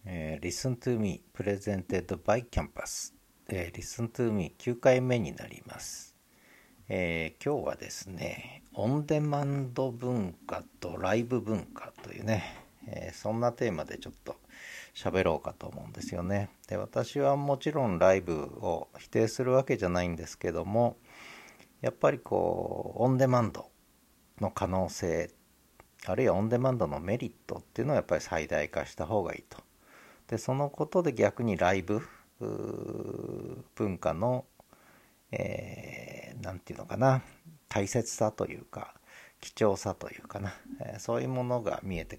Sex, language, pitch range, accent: male, Japanese, 95-130 Hz, native